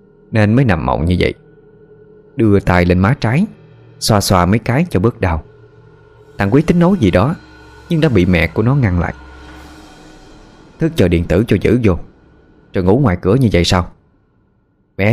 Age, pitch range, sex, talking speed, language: 20-39, 90-145 Hz, male, 185 wpm, Vietnamese